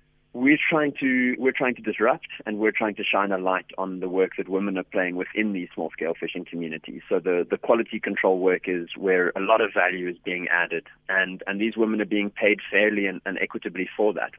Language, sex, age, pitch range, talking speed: English, male, 30-49, 95-115 Hz, 230 wpm